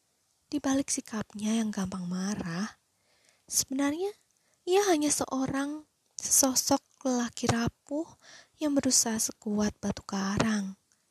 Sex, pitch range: female, 195-270 Hz